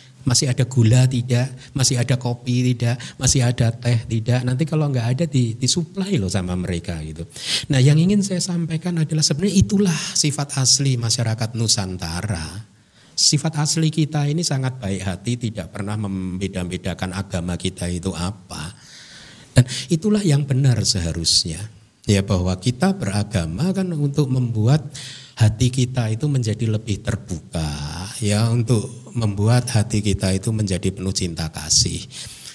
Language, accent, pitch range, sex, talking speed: Indonesian, native, 95-145 Hz, male, 140 wpm